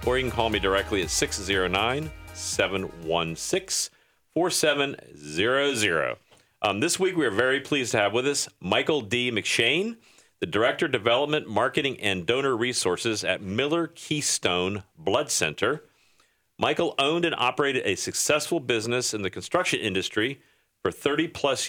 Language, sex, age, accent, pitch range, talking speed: English, male, 40-59, American, 100-140 Hz, 130 wpm